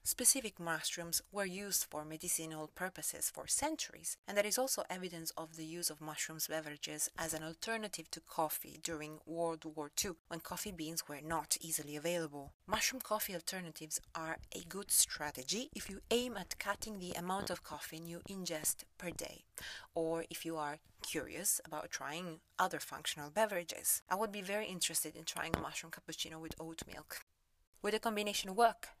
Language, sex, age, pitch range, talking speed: English, female, 30-49, 160-205 Hz, 170 wpm